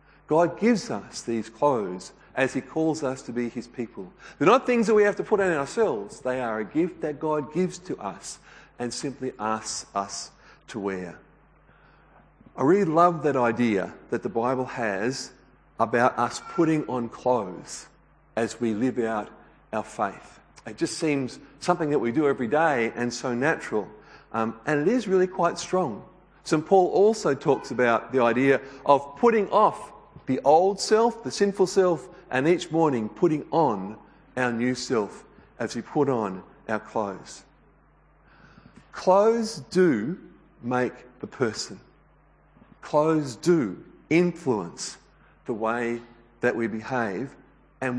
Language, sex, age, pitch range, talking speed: English, male, 50-69, 120-180 Hz, 150 wpm